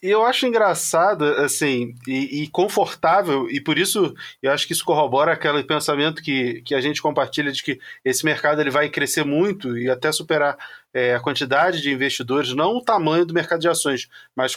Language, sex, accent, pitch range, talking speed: Portuguese, male, Brazilian, 145-185 Hz, 180 wpm